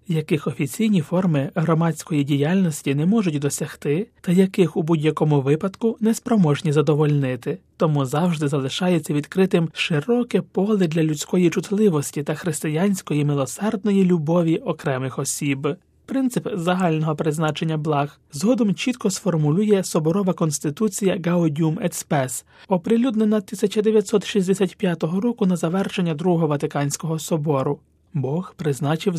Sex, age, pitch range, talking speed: male, 30-49, 150-195 Hz, 105 wpm